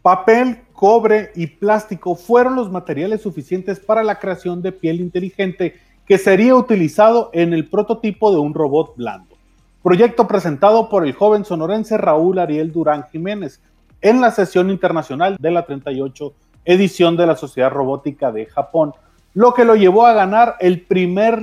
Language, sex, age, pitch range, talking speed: Spanish, male, 30-49, 155-200 Hz, 155 wpm